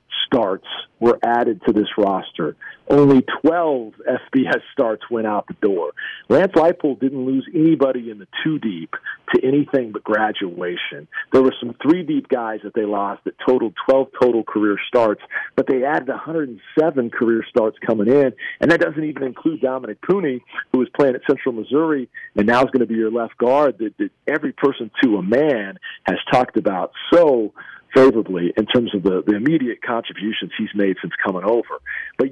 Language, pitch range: English, 110-150 Hz